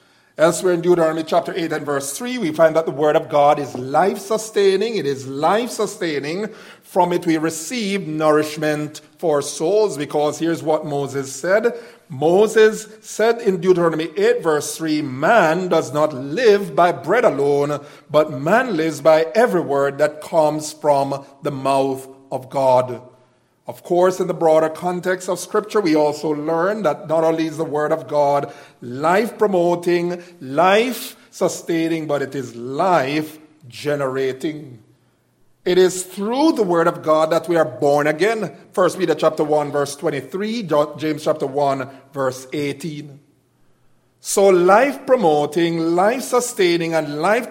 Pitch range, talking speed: 145-185 Hz, 150 wpm